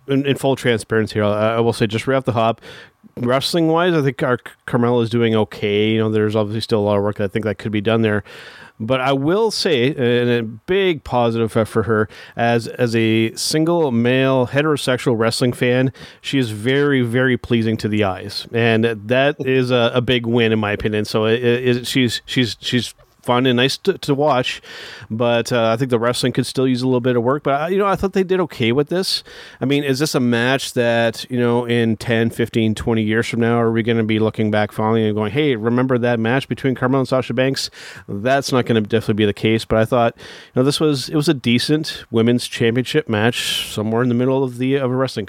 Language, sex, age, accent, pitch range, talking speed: English, male, 30-49, American, 115-130 Hz, 235 wpm